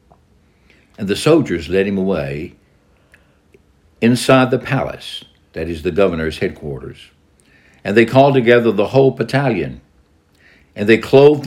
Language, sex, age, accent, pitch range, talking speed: English, male, 60-79, American, 75-115 Hz, 125 wpm